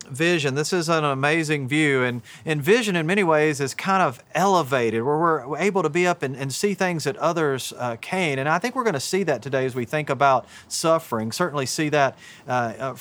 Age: 40-59